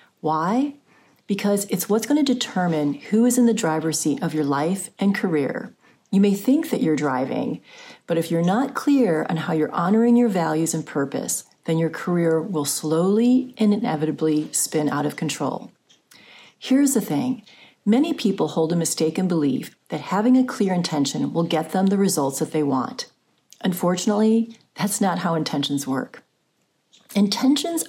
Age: 40-59